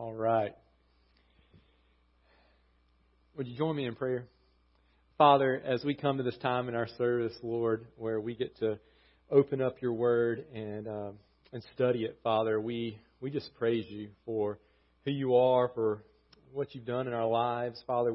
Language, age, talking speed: English, 40-59, 165 wpm